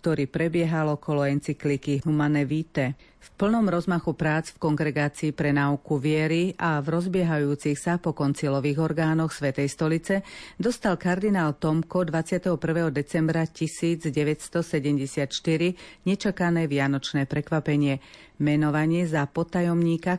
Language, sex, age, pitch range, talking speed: Slovak, female, 40-59, 145-175 Hz, 105 wpm